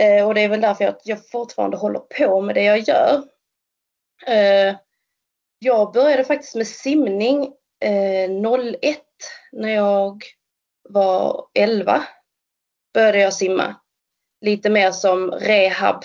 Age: 30-49